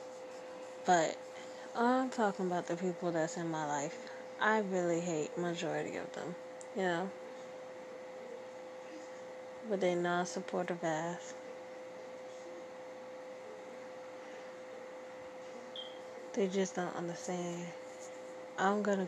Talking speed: 90 wpm